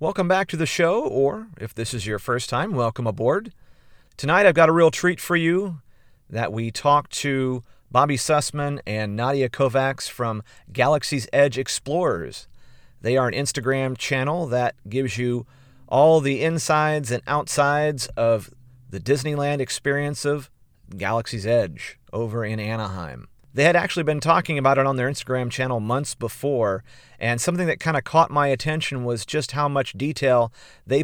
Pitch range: 120-150 Hz